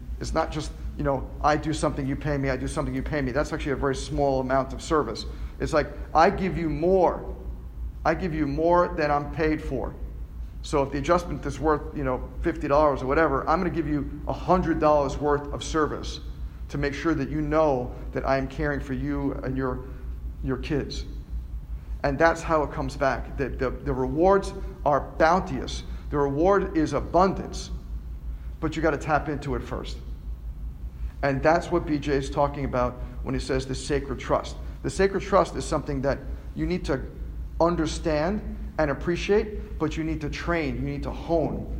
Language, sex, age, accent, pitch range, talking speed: English, male, 50-69, American, 125-165 Hz, 190 wpm